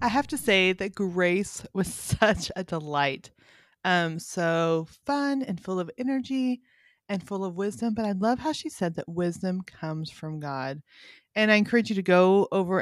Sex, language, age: female, English, 30-49